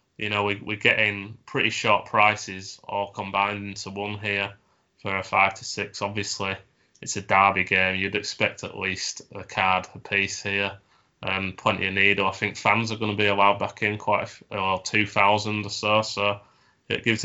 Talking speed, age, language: 190 wpm, 20-39, English